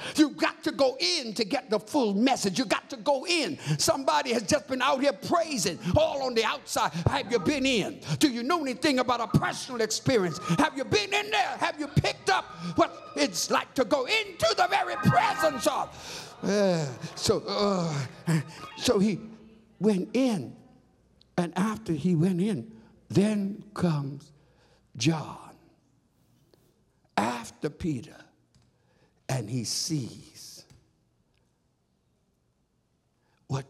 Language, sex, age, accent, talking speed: English, male, 60-79, American, 140 wpm